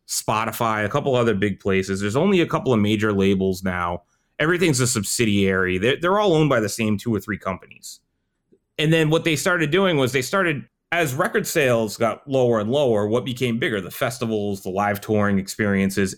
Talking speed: 195 wpm